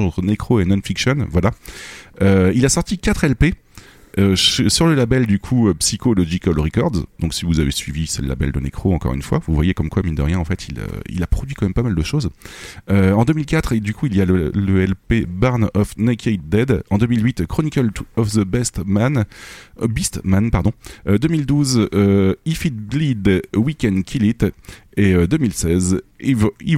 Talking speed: 200 wpm